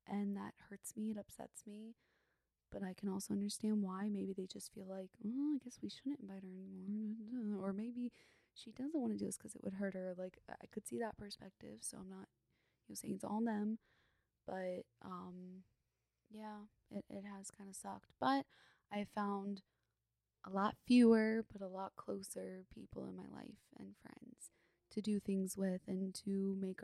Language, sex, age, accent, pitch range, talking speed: English, female, 20-39, American, 190-215 Hz, 195 wpm